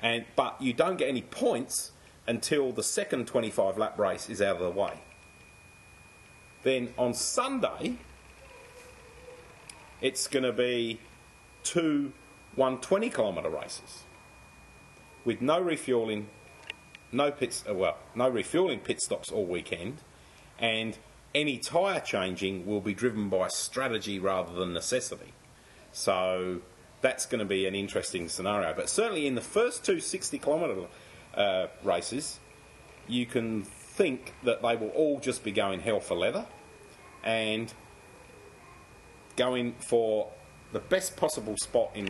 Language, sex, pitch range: English, male, 95-125 Hz